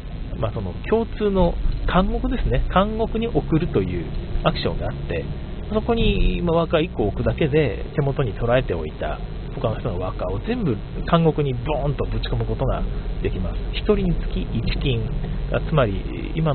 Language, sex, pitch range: Japanese, male, 105-155 Hz